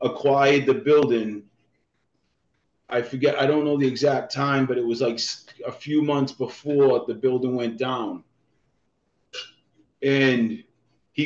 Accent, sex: American, male